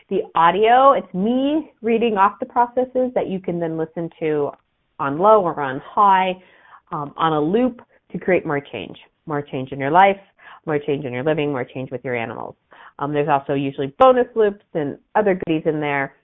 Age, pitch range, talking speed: 40-59, 145-240 Hz, 195 wpm